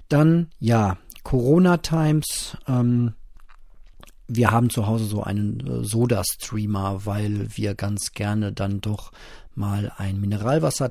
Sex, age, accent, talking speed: male, 40-59, German, 110 wpm